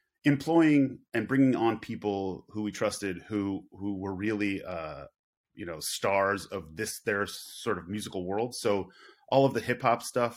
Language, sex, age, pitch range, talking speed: English, male, 30-49, 95-110 Hz, 175 wpm